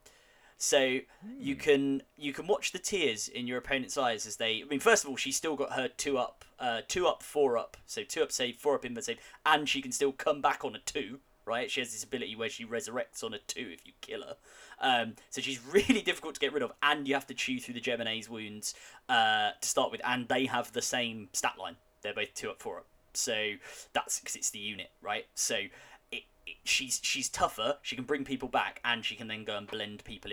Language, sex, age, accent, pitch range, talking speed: English, male, 20-39, British, 120-155 Hz, 240 wpm